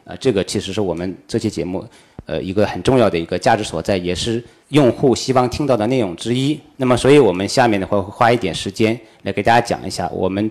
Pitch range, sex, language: 95-125 Hz, male, Chinese